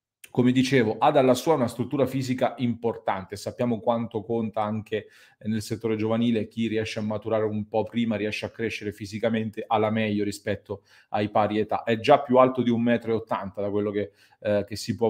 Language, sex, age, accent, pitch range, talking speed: Italian, male, 30-49, native, 110-125 Hz, 185 wpm